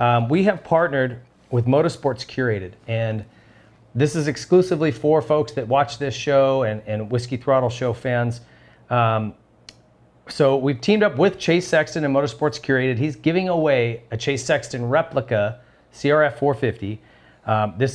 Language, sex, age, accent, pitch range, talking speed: English, male, 40-59, American, 115-145 Hz, 150 wpm